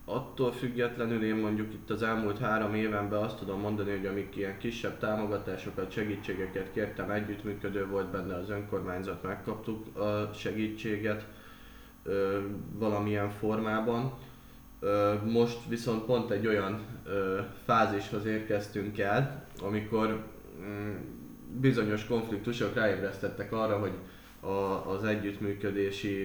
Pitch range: 95-105 Hz